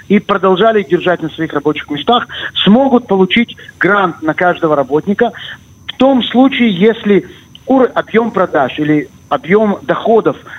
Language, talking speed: Russian, 125 wpm